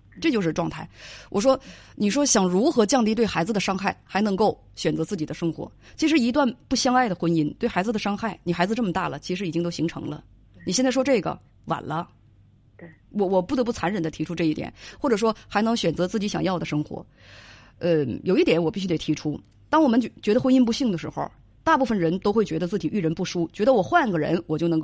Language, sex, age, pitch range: Chinese, female, 30-49, 160-230 Hz